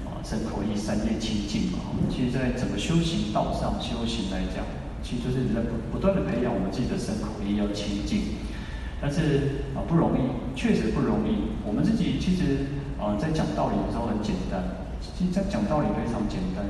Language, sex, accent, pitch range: Chinese, male, native, 100-145 Hz